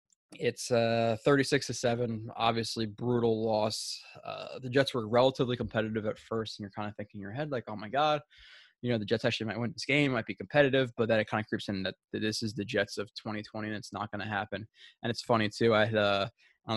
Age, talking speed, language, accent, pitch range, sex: 20-39, 245 wpm, English, American, 105-125 Hz, male